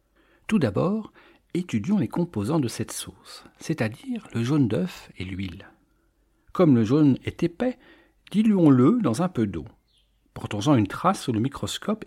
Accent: French